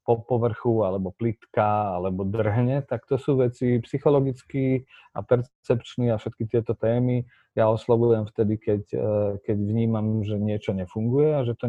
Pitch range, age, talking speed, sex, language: 100-120 Hz, 40-59, 150 wpm, male, Slovak